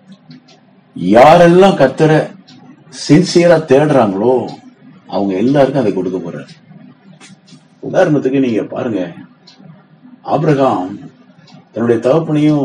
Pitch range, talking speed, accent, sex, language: 115-175 Hz, 70 wpm, native, male, Tamil